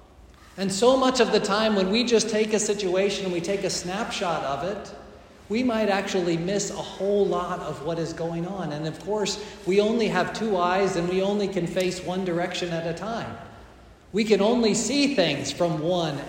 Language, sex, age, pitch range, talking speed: English, male, 40-59, 170-210 Hz, 205 wpm